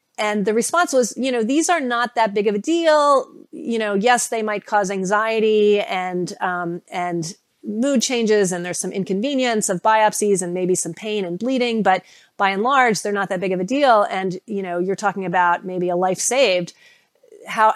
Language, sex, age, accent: English, female, 30-49, American